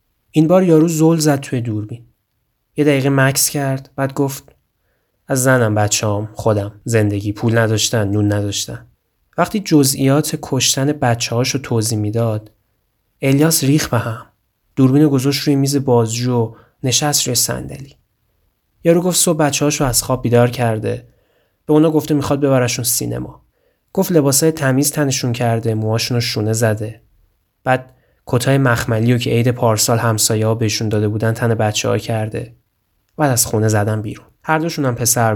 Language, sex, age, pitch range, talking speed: Persian, male, 30-49, 110-140 Hz, 140 wpm